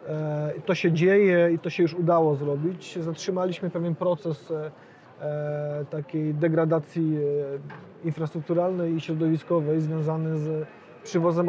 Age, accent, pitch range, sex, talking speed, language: 30-49, native, 150-170 Hz, male, 105 wpm, Polish